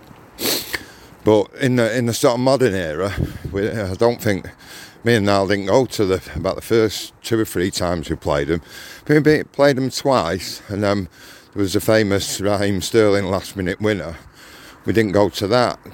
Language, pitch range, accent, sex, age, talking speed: English, 95-115 Hz, British, male, 50-69, 190 wpm